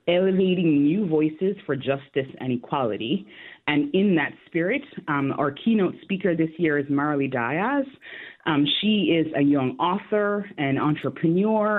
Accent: American